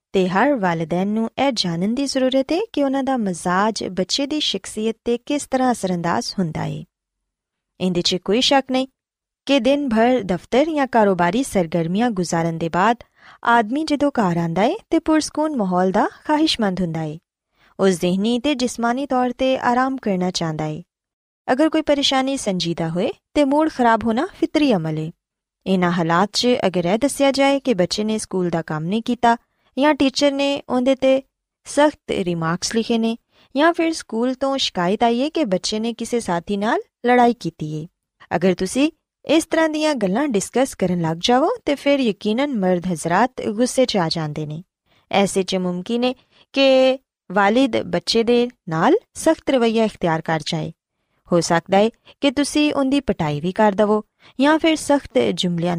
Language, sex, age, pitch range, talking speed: Punjabi, female, 20-39, 180-275 Hz, 155 wpm